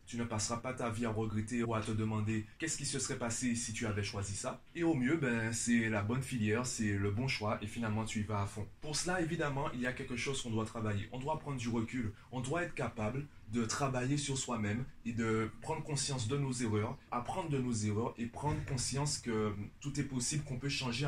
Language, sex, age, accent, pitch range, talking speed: French, male, 20-39, French, 115-140 Hz, 245 wpm